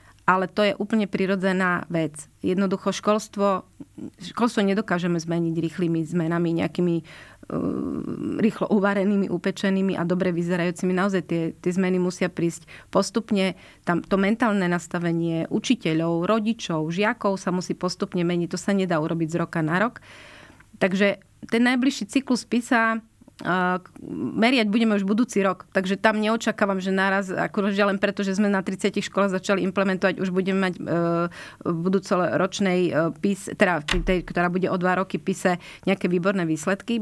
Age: 30-49